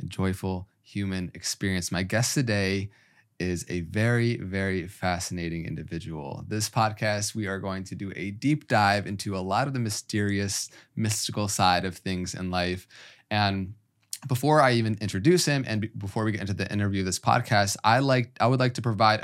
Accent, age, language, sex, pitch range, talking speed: American, 20-39, English, male, 95-115 Hz, 175 wpm